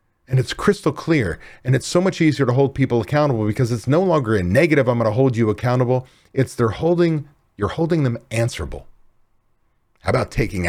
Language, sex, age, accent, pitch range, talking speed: English, male, 40-59, American, 110-155 Hz, 195 wpm